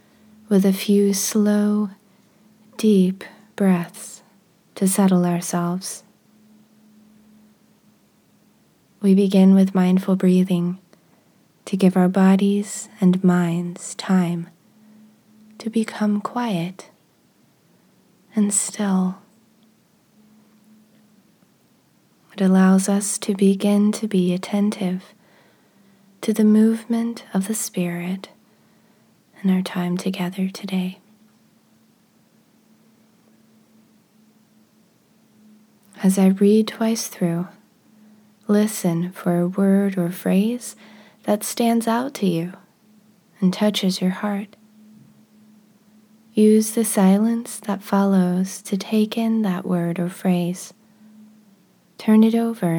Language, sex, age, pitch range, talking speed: English, female, 20-39, 190-215 Hz, 90 wpm